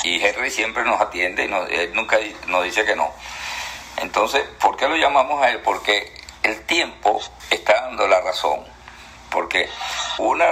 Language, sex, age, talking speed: Spanish, male, 50-69, 160 wpm